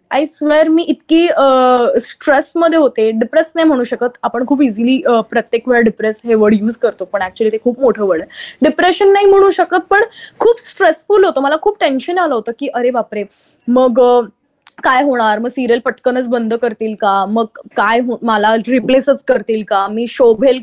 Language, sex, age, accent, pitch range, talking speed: Marathi, female, 20-39, native, 235-310 Hz, 170 wpm